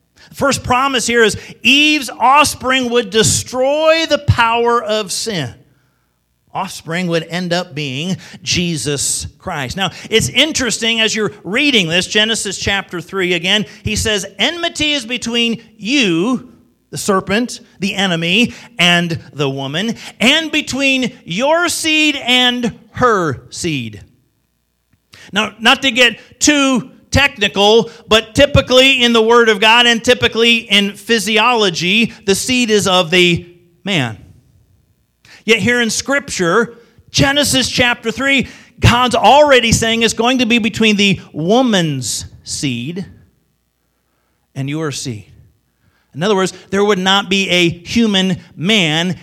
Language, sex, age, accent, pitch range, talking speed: English, male, 50-69, American, 170-240 Hz, 130 wpm